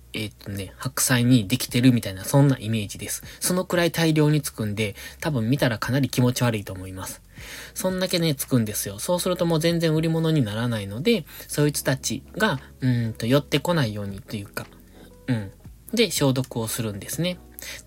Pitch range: 110-150 Hz